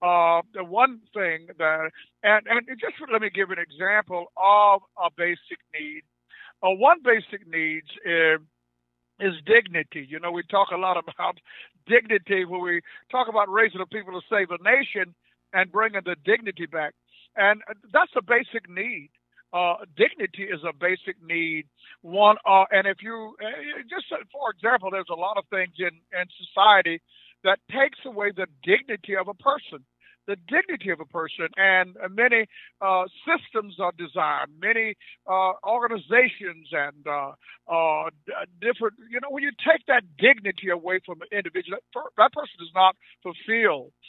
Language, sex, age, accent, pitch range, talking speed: English, male, 60-79, American, 175-225 Hz, 155 wpm